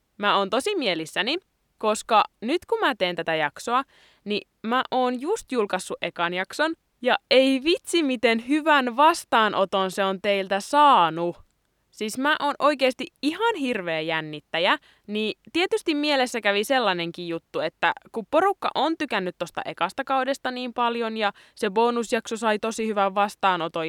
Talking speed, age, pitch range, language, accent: 145 wpm, 20-39, 190-285 Hz, Finnish, native